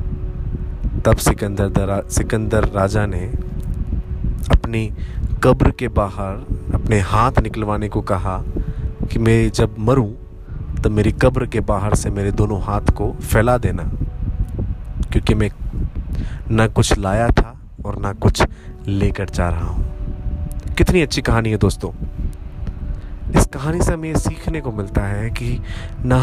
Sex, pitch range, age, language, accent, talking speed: male, 90-115 Hz, 20-39, Hindi, native, 135 wpm